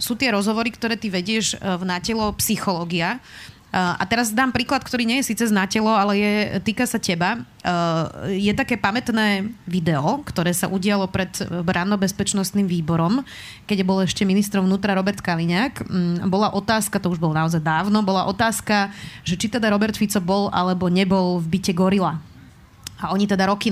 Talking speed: 170 wpm